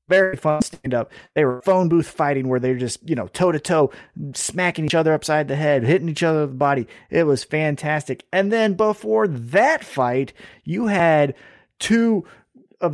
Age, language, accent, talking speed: 30-49, English, American, 195 wpm